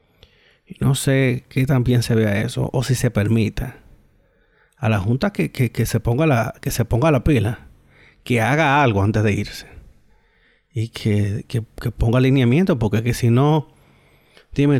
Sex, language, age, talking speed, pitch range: male, Spanish, 30-49, 175 wpm, 115-170 Hz